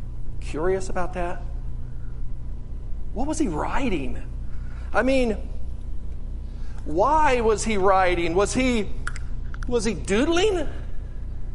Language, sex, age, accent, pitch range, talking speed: English, male, 50-69, American, 175-255 Hz, 95 wpm